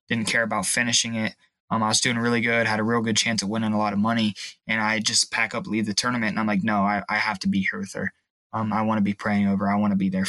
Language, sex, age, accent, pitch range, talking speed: English, male, 20-39, American, 105-115 Hz, 320 wpm